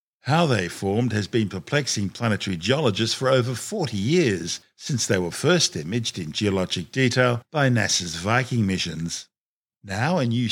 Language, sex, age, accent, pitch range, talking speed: English, male, 50-69, Australian, 100-130 Hz, 155 wpm